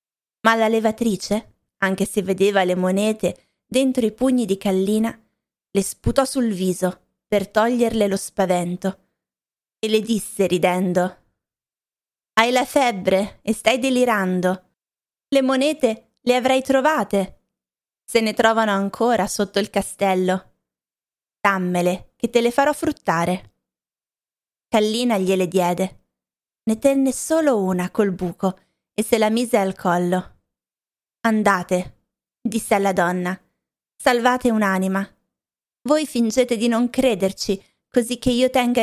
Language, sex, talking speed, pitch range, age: Italian, female, 120 wpm, 190-240 Hz, 20-39